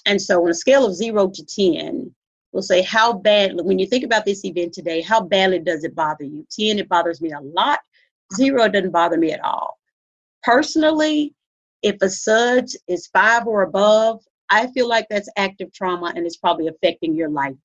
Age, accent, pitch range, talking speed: 40-59, American, 180-225 Hz, 195 wpm